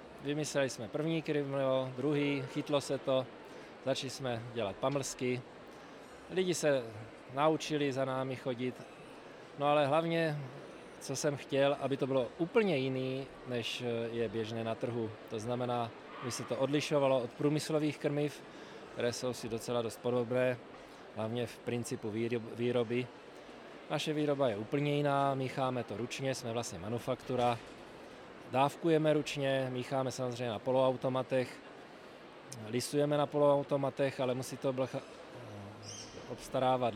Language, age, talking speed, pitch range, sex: Czech, 20-39, 125 wpm, 120-140 Hz, male